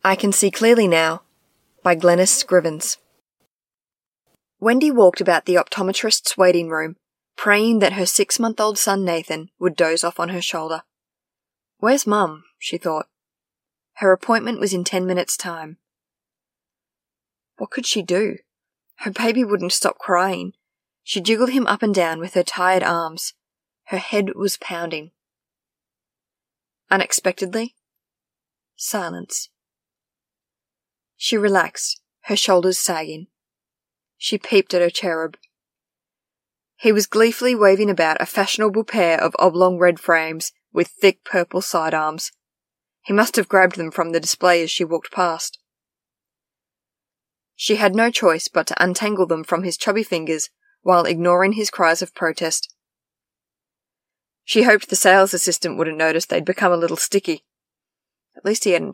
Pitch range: 170-210 Hz